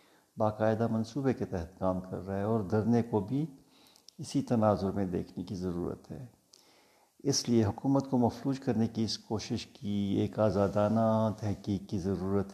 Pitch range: 95-115 Hz